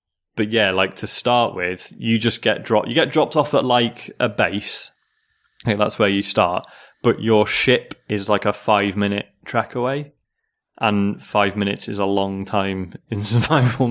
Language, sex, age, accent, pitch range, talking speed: English, male, 20-39, British, 95-115 Hz, 180 wpm